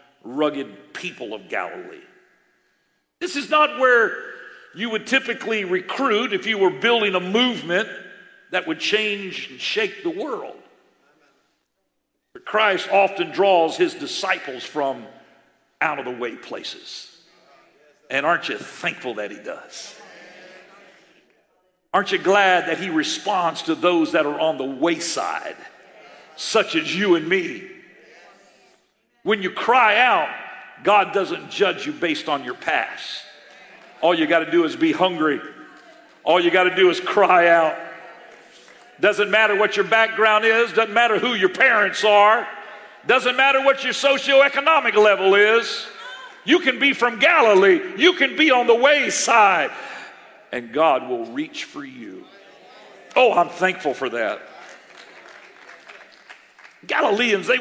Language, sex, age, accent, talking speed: English, male, 50-69, American, 140 wpm